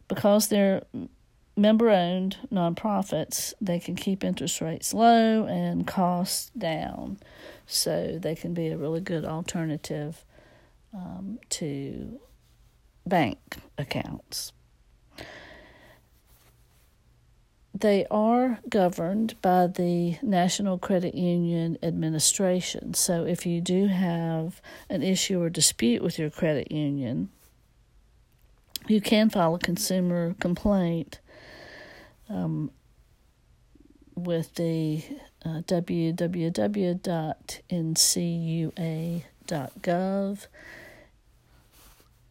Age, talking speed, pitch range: 60-79, 85 wpm, 160-190 Hz